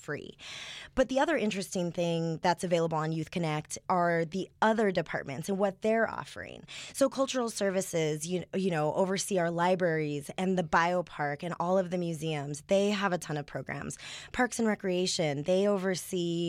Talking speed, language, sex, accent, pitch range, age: 170 wpm, English, female, American, 170-205 Hz, 20-39